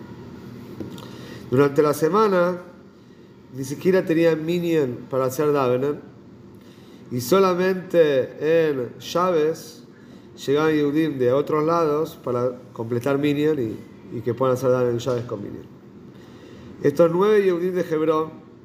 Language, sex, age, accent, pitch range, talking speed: Spanish, male, 40-59, Argentinian, 130-160 Hz, 115 wpm